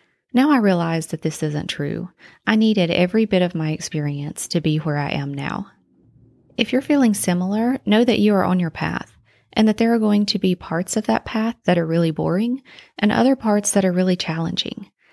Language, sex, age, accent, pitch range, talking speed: English, female, 30-49, American, 165-215 Hz, 210 wpm